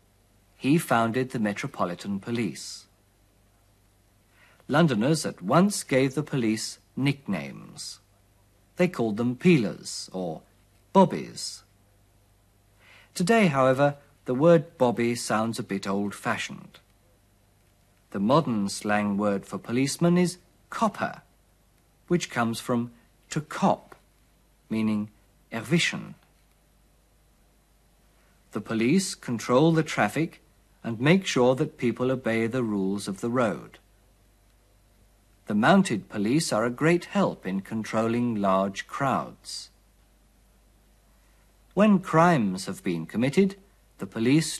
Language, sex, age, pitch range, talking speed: German, male, 50-69, 100-150 Hz, 100 wpm